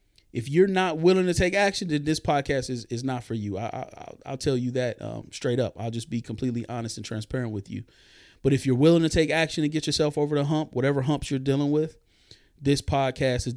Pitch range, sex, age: 110-145 Hz, male, 30-49